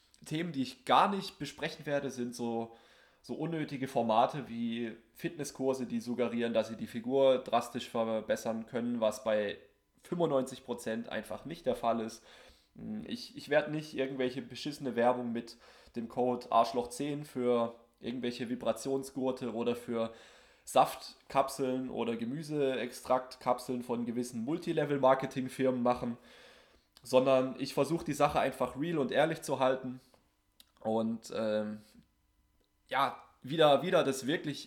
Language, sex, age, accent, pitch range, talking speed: German, male, 20-39, German, 115-135 Hz, 125 wpm